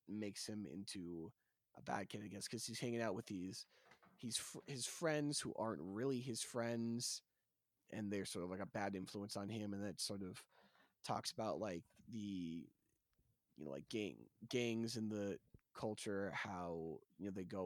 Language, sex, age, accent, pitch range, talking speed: English, male, 20-39, American, 95-115 Hz, 180 wpm